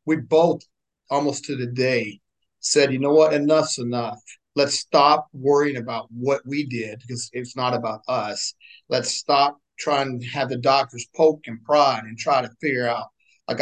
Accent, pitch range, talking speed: American, 125-150 Hz, 175 wpm